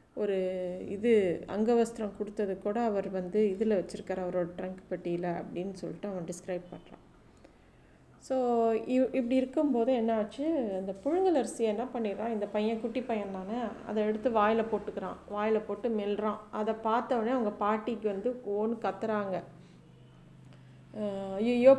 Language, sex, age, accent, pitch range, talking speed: Tamil, female, 30-49, native, 195-240 Hz, 135 wpm